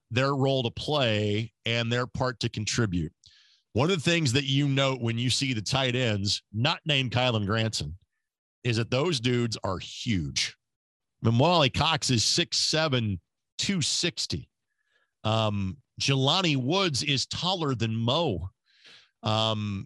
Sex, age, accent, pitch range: male, 40-59, American, 115-150 Hz